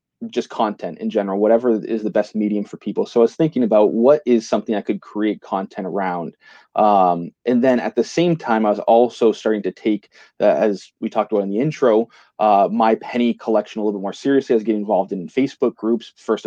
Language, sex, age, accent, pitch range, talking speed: English, male, 20-39, American, 105-125 Hz, 225 wpm